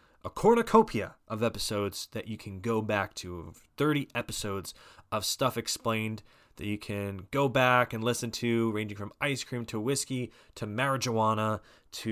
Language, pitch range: English, 95-120 Hz